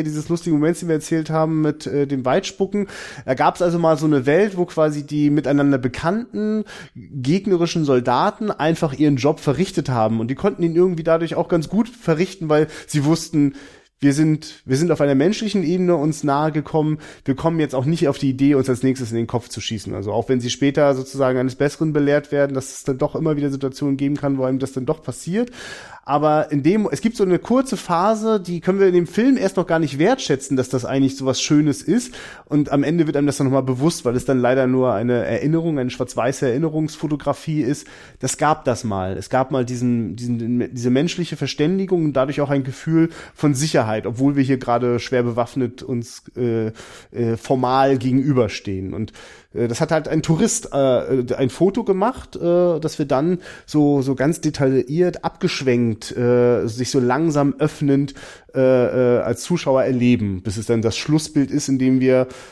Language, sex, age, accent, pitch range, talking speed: German, male, 30-49, German, 130-160 Hz, 200 wpm